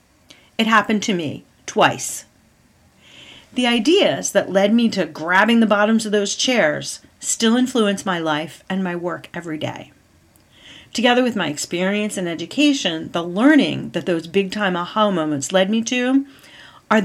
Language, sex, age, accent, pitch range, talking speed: English, female, 40-59, American, 180-235 Hz, 155 wpm